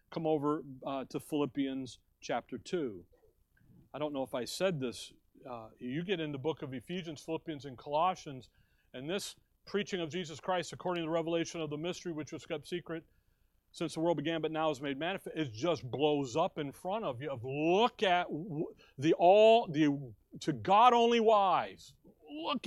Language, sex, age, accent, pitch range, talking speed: English, male, 40-59, American, 150-195 Hz, 185 wpm